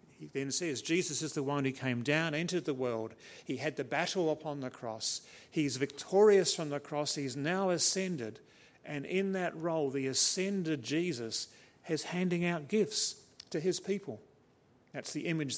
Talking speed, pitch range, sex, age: 175 wpm, 135-175 Hz, male, 50-69